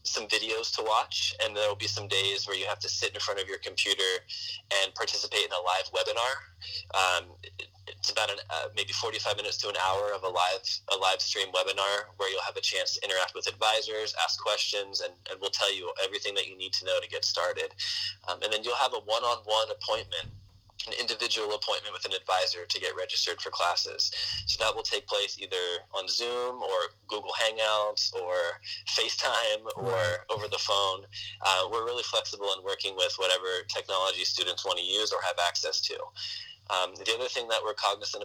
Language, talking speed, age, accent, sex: English, 200 wpm, 20-39, American, male